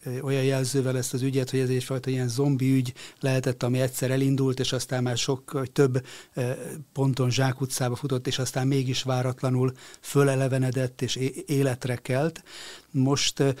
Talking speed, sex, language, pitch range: 140 wpm, male, Hungarian, 125-140 Hz